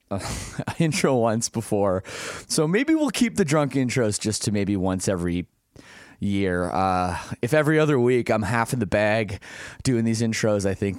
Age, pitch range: 30-49, 105-155 Hz